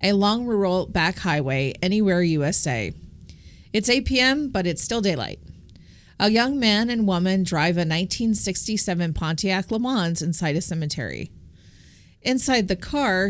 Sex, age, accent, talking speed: female, 30-49, American, 140 wpm